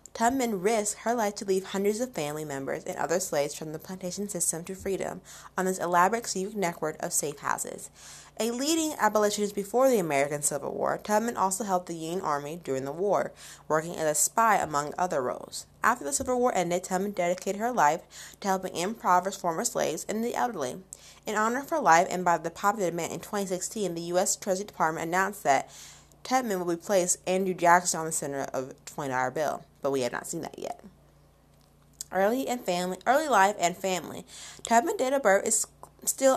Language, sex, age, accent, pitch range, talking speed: English, female, 20-39, American, 170-215 Hz, 195 wpm